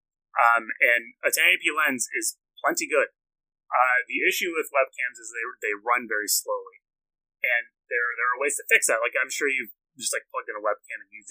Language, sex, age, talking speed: English, male, 30-49, 205 wpm